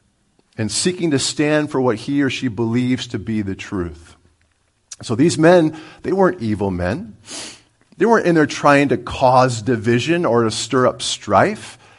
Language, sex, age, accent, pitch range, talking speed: English, male, 50-69, American, 105-150 Hz, 170 wpm